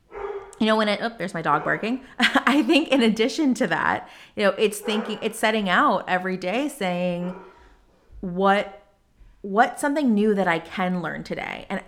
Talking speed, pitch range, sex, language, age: 175 wpm, 175-230 Hz, female, English, 30-49